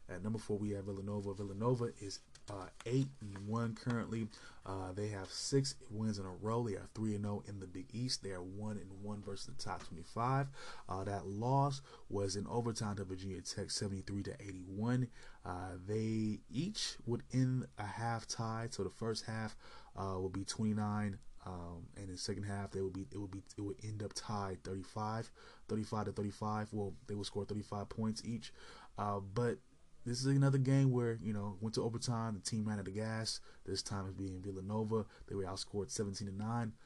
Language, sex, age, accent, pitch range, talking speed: English, male, 20-39, American, 100-115 Hz, 200 wpm